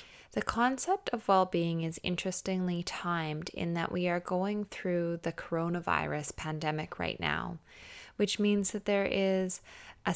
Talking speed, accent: 150 wpm, American